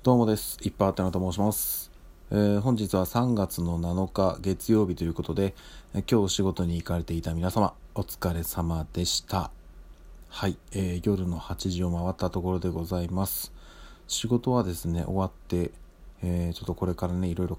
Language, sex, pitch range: Japanese, male, 85-105 Hz